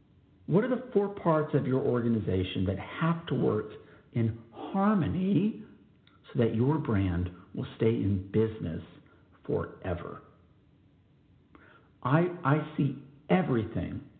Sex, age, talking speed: male, 50-69, 115 wpm